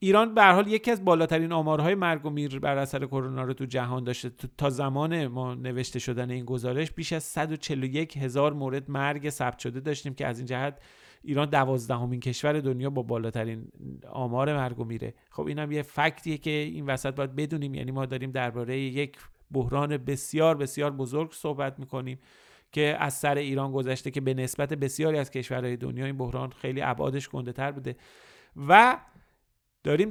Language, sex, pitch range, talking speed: Persian, male, 130-155 Hz, 175 wpm